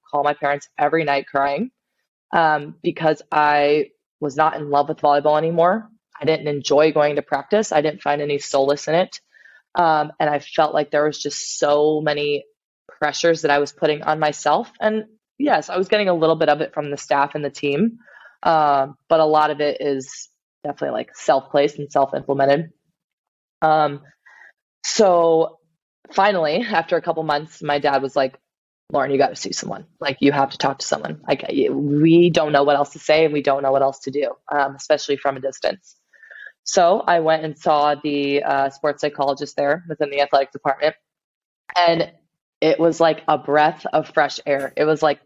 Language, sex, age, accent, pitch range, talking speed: English, female, 20-39, American, 145-165 Hz, 190 wpm